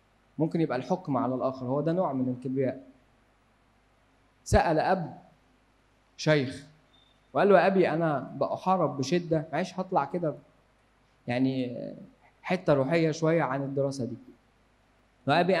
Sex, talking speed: male, 120 wpm